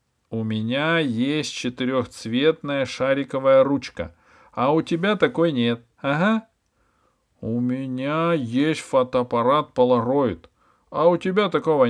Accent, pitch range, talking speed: native, 110-165 Hz, 105 wpm